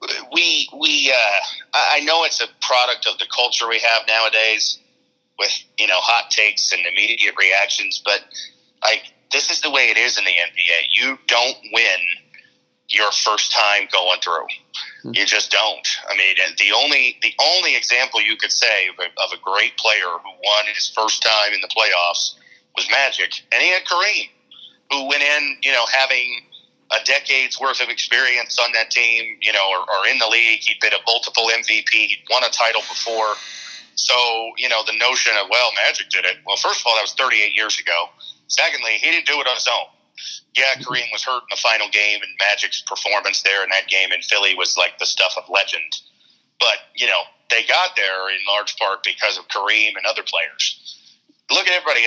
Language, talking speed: English, 200 wpm